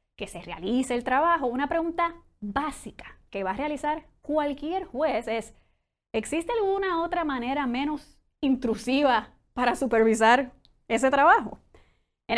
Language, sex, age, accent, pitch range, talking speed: English, female, 20-39, American, 225-315 Hz, 125 wpm